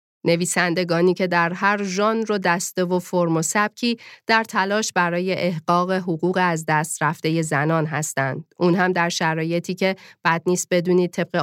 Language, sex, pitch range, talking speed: Persian, female, 165-195 Hz, 160 wpm